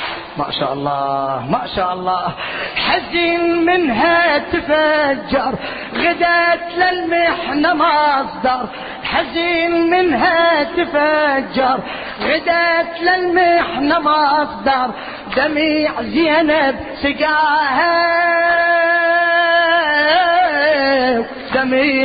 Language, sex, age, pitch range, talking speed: Arabic, female, 30-49, 255-295 Hz, 60 wpm